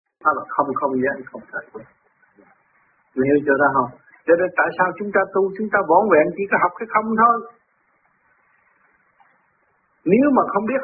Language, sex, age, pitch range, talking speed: Vietnamese, male, 60-79, 190-245 Hz, 155 wpm